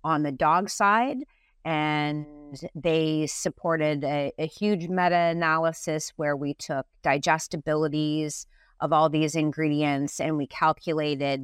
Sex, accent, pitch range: female, American, 145-170 Hz